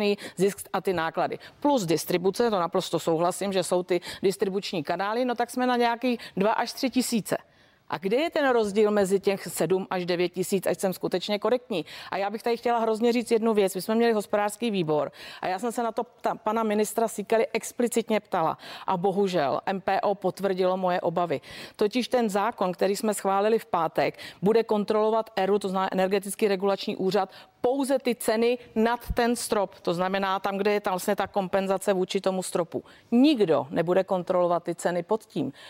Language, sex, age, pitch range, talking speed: Czech, female, 40-59, 185-220 Hz, 185 wpm